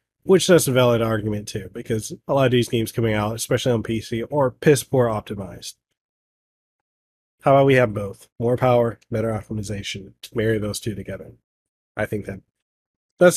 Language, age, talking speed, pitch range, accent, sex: English, 30-49, 175 wpm, 105-130 Hz, American, male